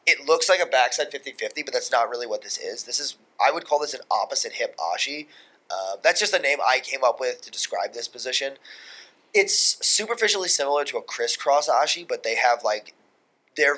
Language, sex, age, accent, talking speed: English, male, 20-39, American, 200 wpm